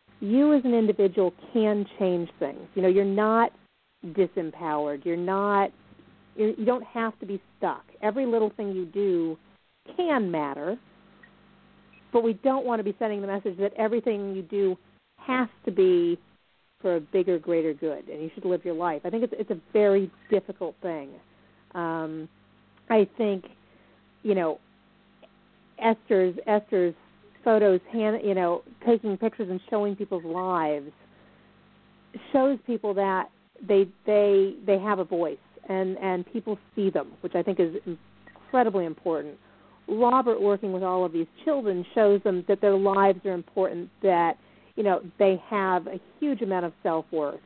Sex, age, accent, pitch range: female, 40-59, American, 175-215 Hz